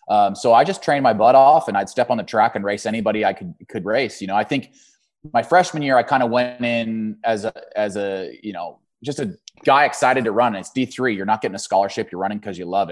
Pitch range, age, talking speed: 100-125 Hz, 20-39, 270 wpm